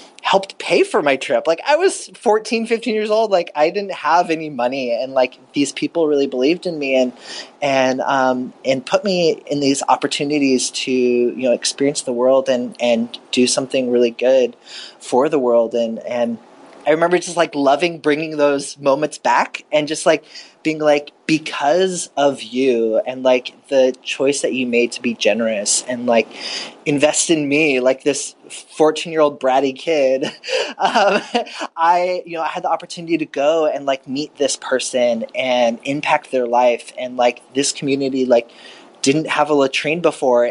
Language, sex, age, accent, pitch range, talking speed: English, male, 20-39, American, 130-160 Hz, 175 wpm